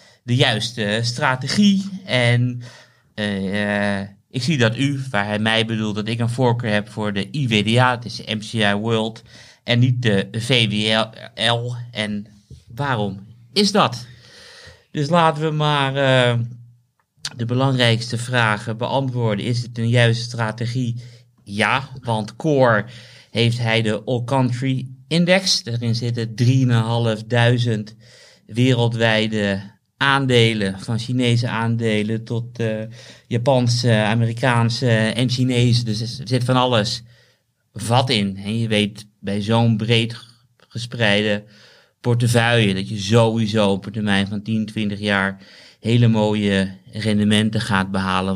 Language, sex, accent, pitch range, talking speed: Dutch, male, Dutch, 105-120 Hz, 125 wpm